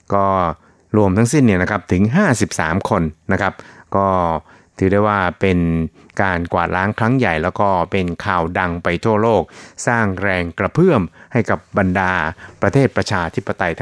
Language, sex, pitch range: Thai, male, 90-110 Hz